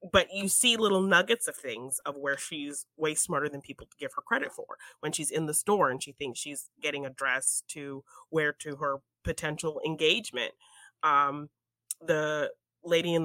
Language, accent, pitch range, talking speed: English, American, 135-170 Hz, 185 wpm